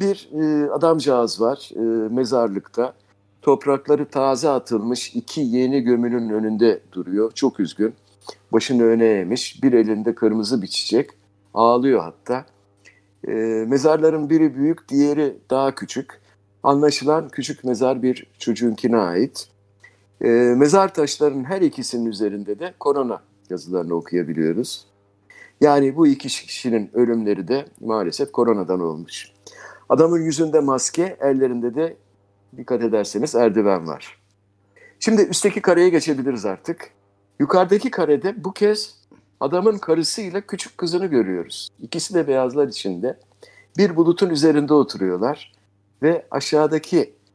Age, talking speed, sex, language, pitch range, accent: 50-69, 110 wpm, male, Turkish, 100-150 Hz, native